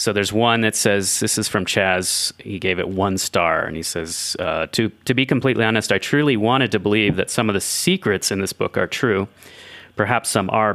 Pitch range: 90-110 Hz